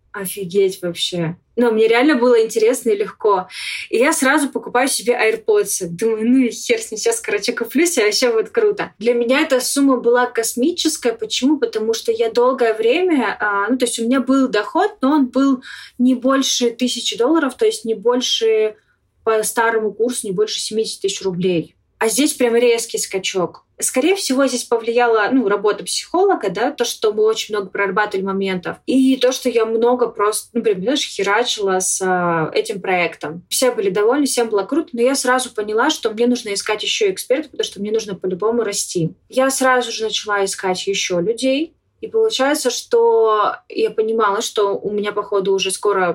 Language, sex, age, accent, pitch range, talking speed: Russian, female, 20-39, native, 205-280 Hz, 175 wpm